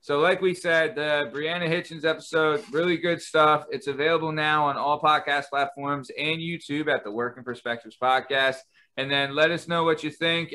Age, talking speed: 30-49, 195 wpm